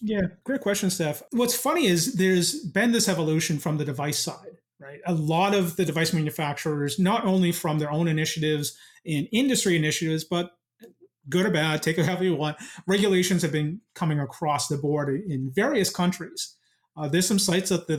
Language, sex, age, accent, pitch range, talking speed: English, male, 30-49, American, 150-185 Hz, 185 wpm